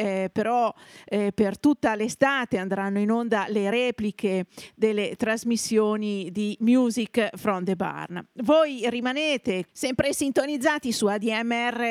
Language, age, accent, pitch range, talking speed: Italian, 50-69, native, 210-270 Hz, 120 wpm